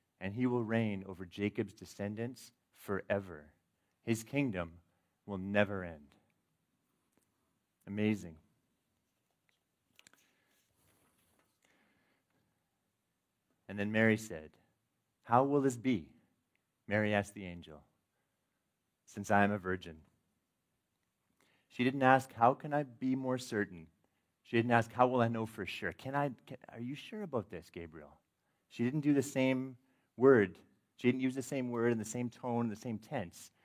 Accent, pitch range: American, 95-120 Hz